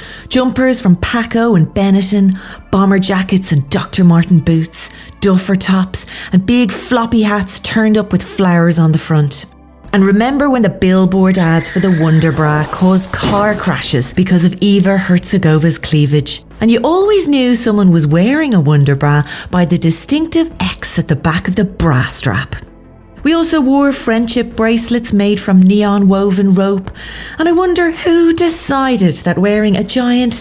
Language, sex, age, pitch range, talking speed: English, female, 30-49, 180-230 Hz, 160 wpm